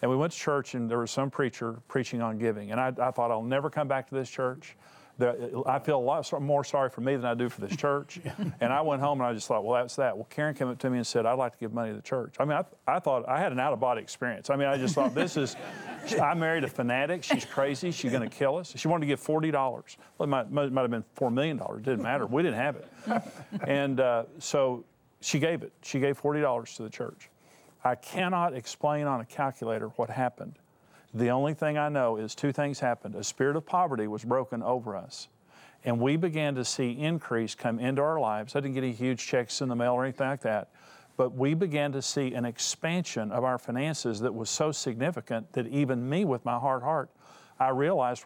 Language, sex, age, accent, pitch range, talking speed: English, male, 50-69, American, 120-150 Hz, 245 wpm